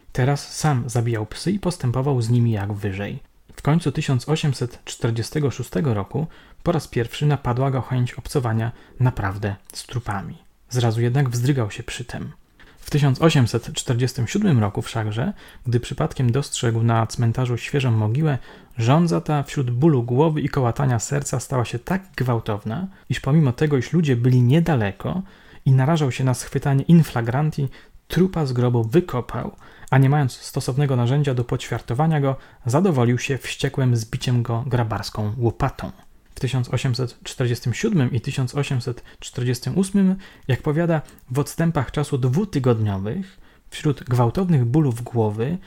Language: Polish